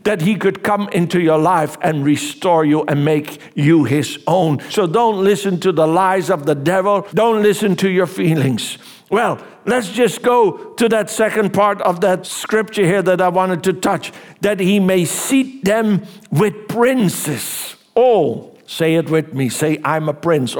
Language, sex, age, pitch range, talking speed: English, male, 60-79, 155-205 Hz, 185 wpm